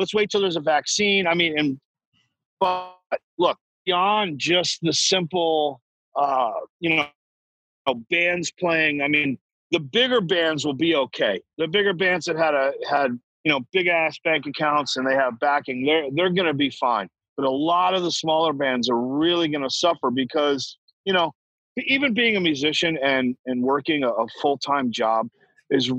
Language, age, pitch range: English, 40-59, 130-165 Hz